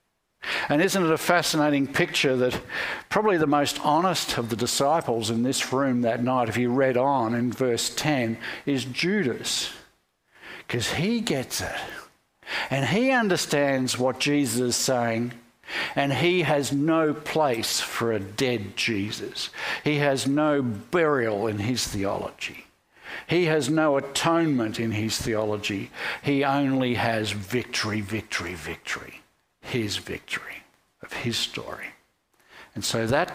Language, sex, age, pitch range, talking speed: English, male, 60-79, 115-145 Hz, 135 wpm